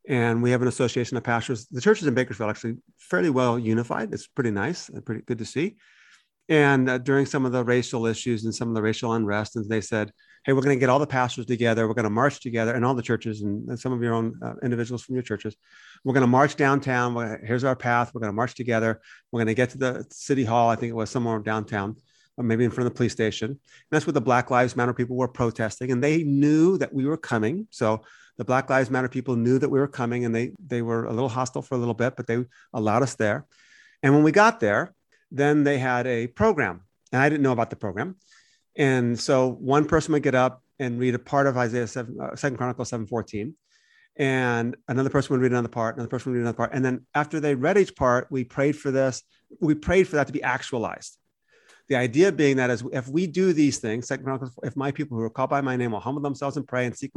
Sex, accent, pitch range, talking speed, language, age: male, American, 115-140 Hz, 255 wpm, English, 40-59